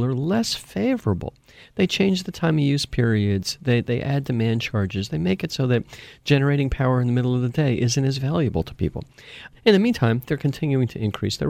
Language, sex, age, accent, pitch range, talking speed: English, male, 50-69, American, 115-160 Hz, 215 wpm